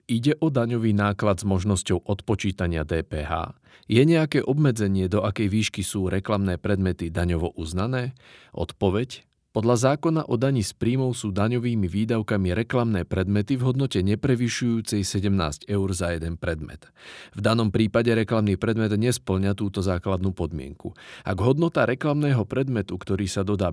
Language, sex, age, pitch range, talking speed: Slovak, male, 40-59, 95-120 Hz, 140 wpm